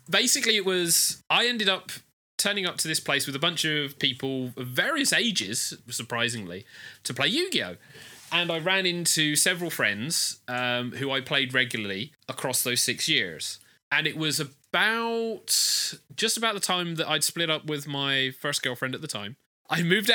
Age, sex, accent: 30-49, male, British